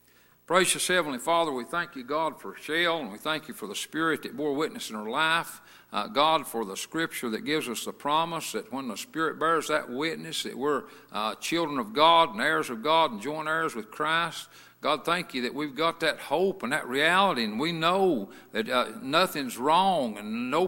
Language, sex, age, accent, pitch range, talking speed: English, male, 60-79, American, 135-180 Hz, 215 wpm